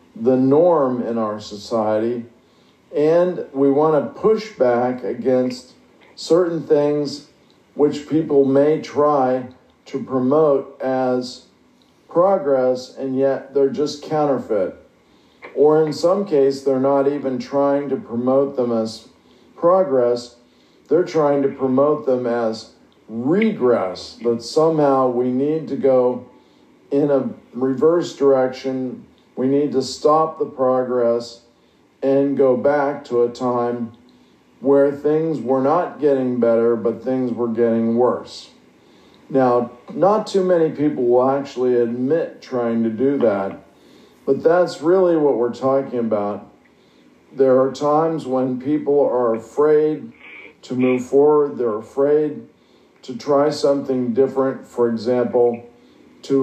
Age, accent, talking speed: 50-69, American, 125 wpm